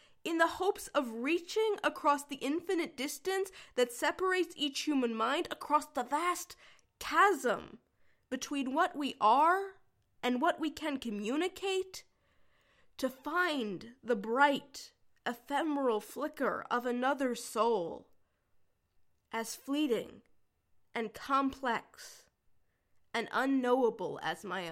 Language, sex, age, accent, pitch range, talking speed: English, female, 20-39, American, 205-305 Hz, 105 wpm